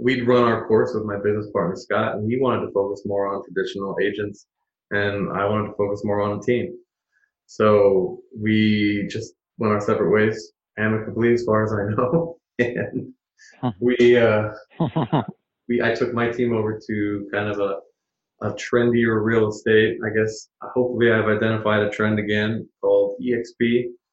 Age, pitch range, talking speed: 20-39, 100-120 Hz, 165 wpm